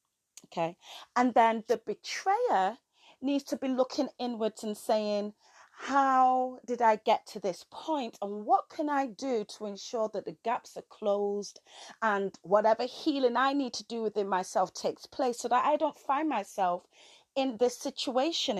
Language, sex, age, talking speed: English, female, 30-49, 165 wpm